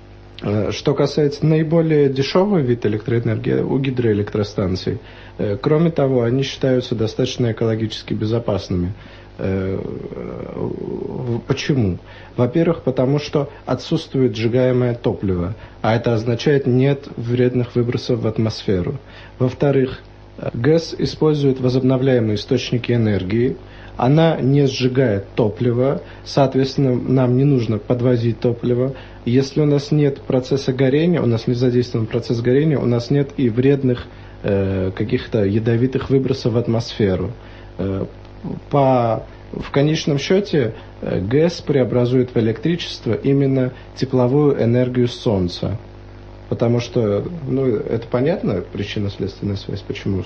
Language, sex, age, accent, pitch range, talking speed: Russian, male, 40-59, native, 110-135 Hz, 110 wpm